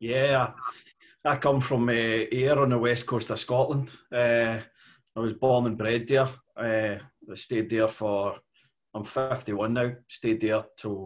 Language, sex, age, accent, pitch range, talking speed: English, male, 30-49, British, 105-125 Hz, 155 wpm